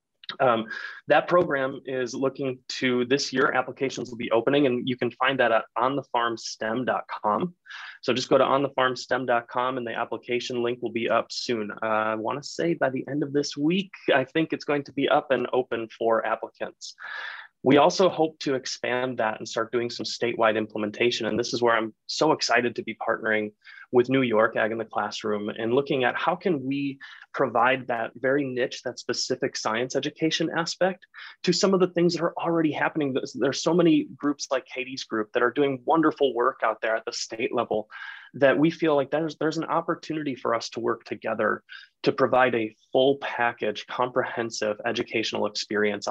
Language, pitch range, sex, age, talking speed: English, 115-145 Hz, male, 20-39, 190 wpm